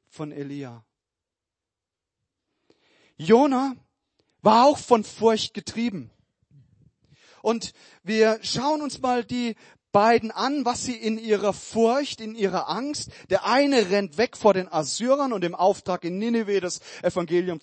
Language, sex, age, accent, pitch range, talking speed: German, male, 40-59, German, 170-240 Hz, 130 wpm